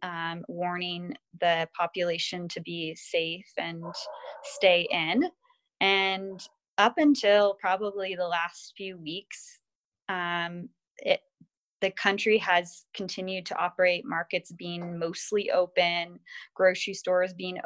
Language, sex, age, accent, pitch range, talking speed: English, female, 20-39, American, 170-195 Hz, 110 wpm